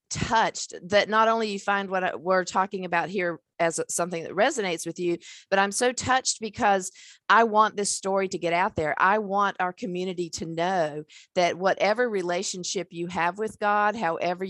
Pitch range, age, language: 165-205 Hz, 50-69, English